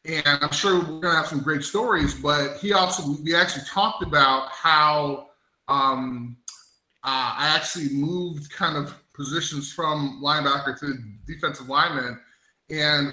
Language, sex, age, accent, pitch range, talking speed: English, male, 20-39, American, 135-165 Hz, 140 wpm